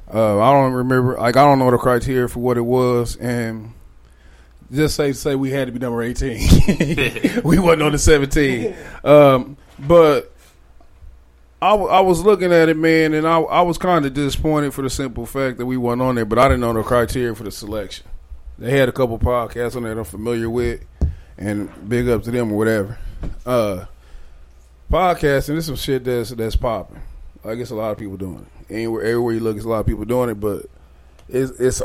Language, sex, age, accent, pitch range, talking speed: English, male, 20-39, American, 105-135 Hz, 215 wpm